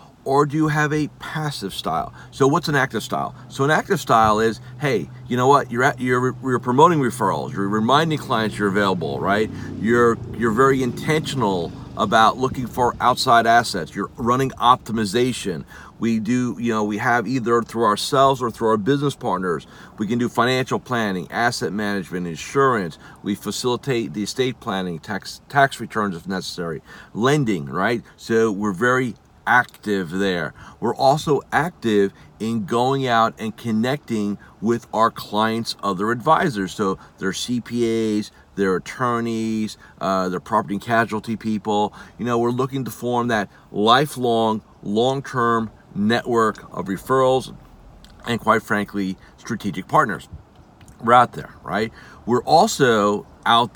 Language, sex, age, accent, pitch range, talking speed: English, male, 40-59, American, 105-130 Hz, 145 wpm